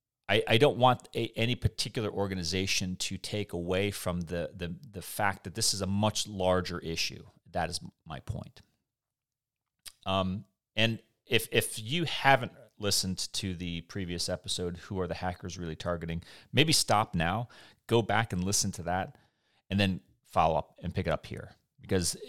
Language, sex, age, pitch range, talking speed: English, male, 30-49, 90-110 Hz, 170 wpm